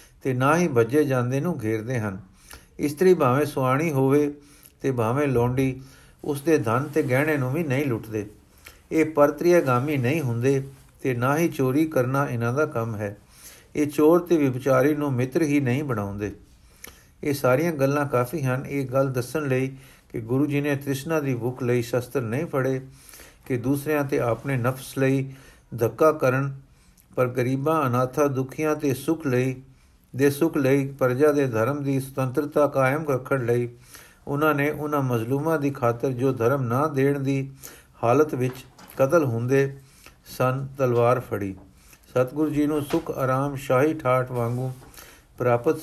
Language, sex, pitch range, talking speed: Punjabi, male, 125-150 Hz, 155 wpm